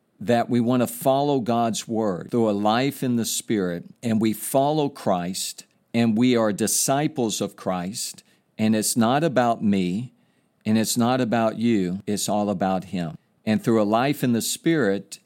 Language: English